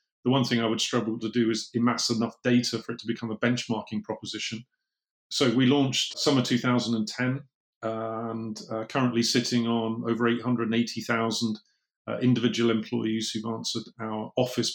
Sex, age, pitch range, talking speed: male, 30-49, 110-120 Hz, 160 wpm